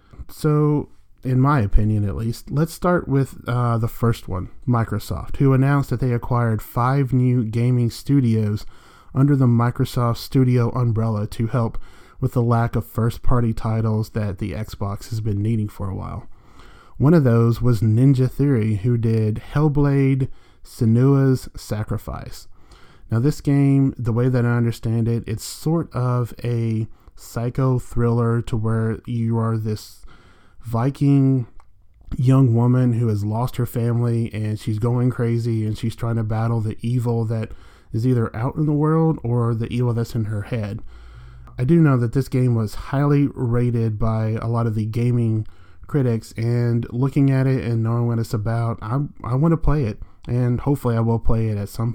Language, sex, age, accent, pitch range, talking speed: English, male, 30-49, American, 110-130 Hz, 170 wpm